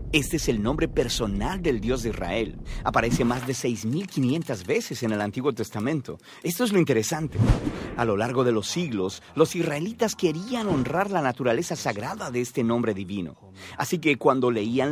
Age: 50-69